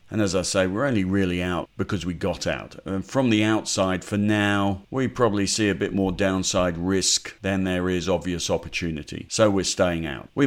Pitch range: 90-110 Hz